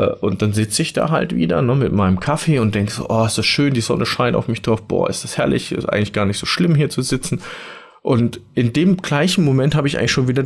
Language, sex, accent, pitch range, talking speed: German, male, German, 95-130 Hz, 270 wpm